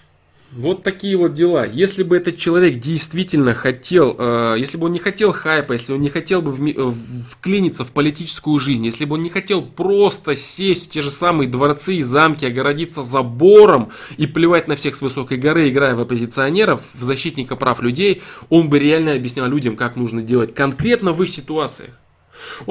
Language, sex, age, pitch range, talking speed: Russian, male, 20-39, 135-180 Hz, 180 wpm